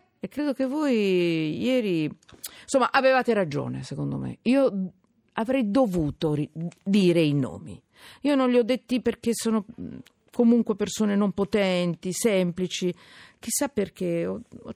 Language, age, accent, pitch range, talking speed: Italian, 50-69, native, 180-245 Hz, 125 wpm